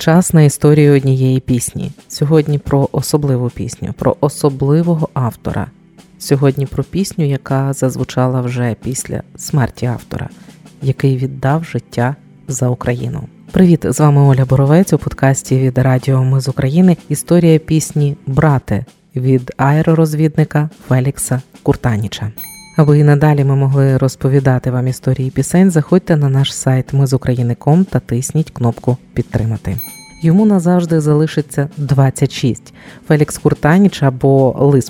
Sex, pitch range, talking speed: female, 130-155 Hz, 120 wpm